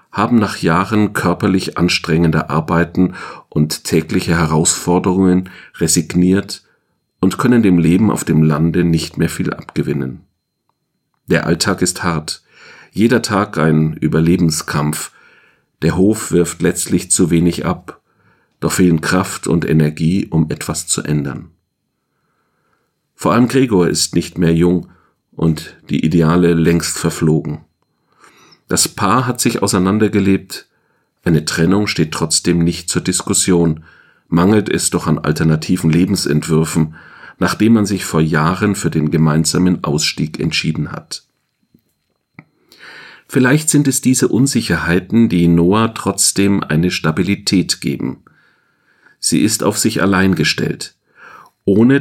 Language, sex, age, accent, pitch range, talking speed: German, male, 40-59, German, 80-100 Hz, 120 wpm